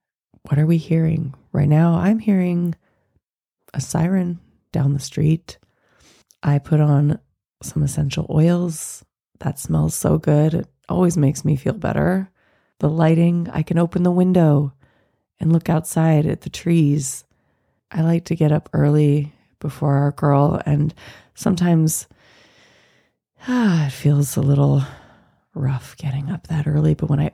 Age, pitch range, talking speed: 20-39, 145-170 Hz, 145 wpm